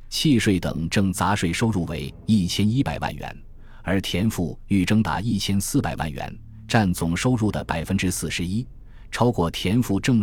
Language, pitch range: Chinese, 90-115 Hz